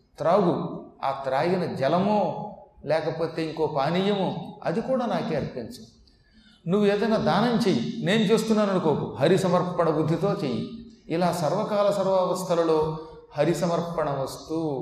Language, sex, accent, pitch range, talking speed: Telugu, male, native, 150-200 Hz, 110 wpm